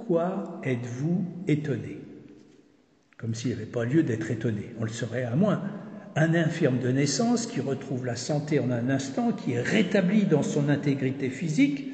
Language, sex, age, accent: French, male, 60-79, French